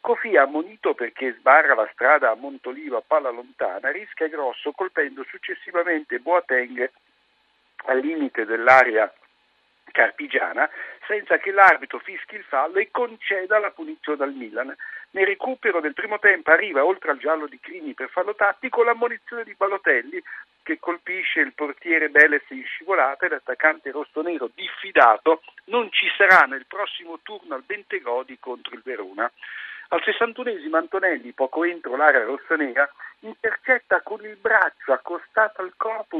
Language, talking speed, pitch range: Italian, 140 wpm, 155-245 Hz